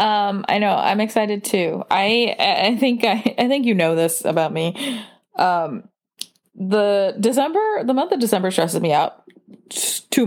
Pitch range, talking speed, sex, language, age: 190-245 Hz, 165 wpm, female, English, 20-39